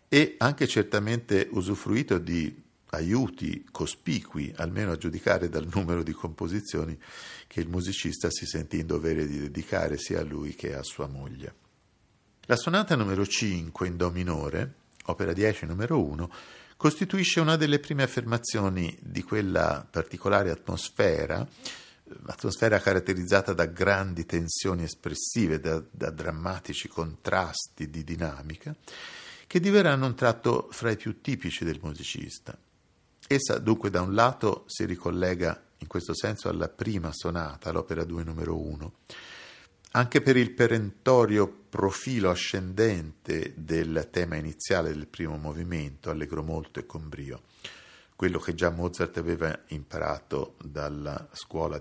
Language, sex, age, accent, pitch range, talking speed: Italian, male, 50-69, native, 80-110 Hz, 130 wpm